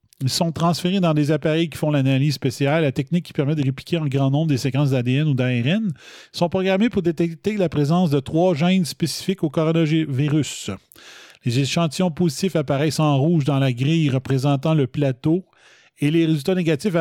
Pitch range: 135-165 Hz